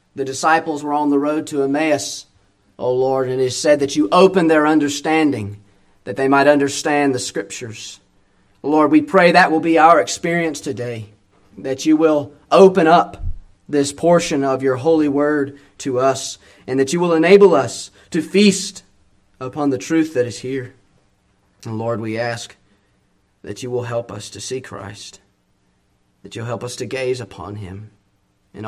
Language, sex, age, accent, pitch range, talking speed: English, male, 30-49, American, 100-140 Hz, 170 wpm